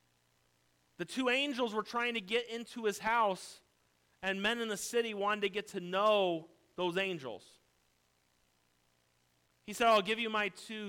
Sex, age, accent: male, 40-59, American